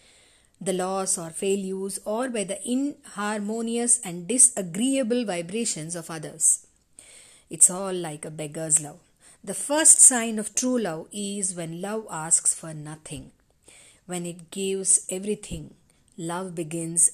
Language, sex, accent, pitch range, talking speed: Telugu, female, native, 165-215 Hz, 135 wpm